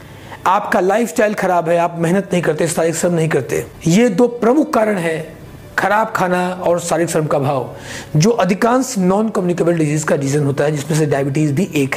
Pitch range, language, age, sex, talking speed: 150-205 Hz, Hindi, 40-59, male, 195 wpm